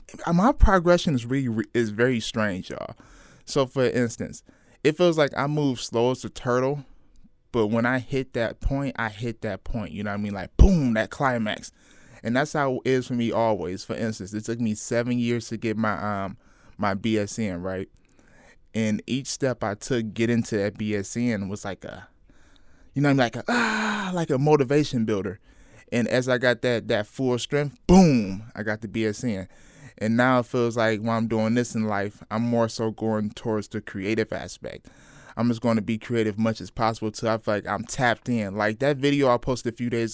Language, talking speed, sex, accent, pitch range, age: English, 210 wpm, male, American, 110-135 Hz, 20-39